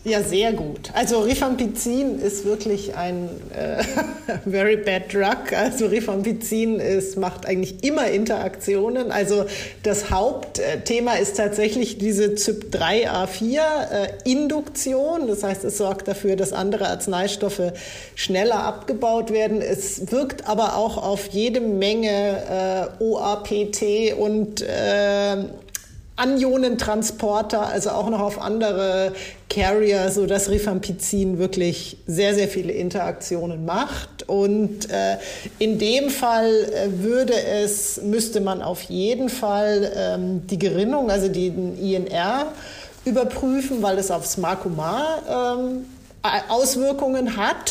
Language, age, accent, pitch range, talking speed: German, 40-59, German, 195-230 Hz, 110 wpm